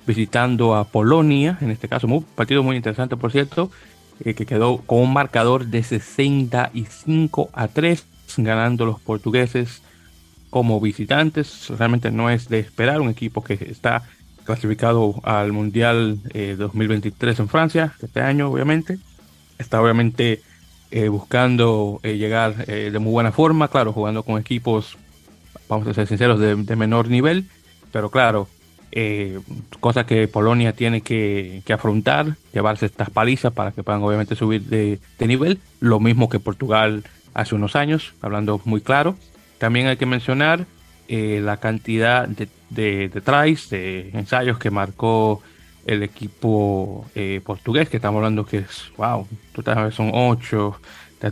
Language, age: Spanish, 30-49